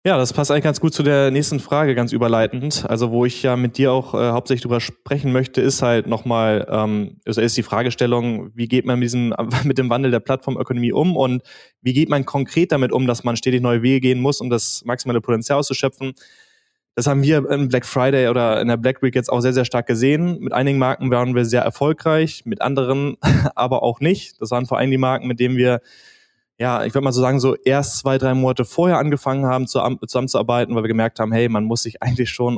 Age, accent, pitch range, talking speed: 20-39, German, 115-135 Hz, 225 wpm